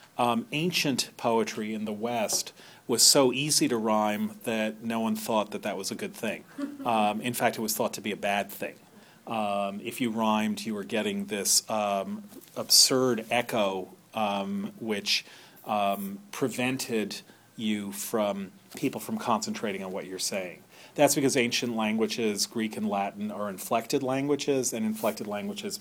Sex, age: male, 40-59